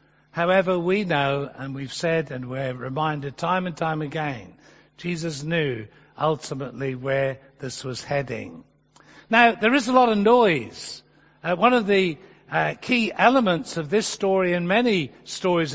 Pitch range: 155-210 Hz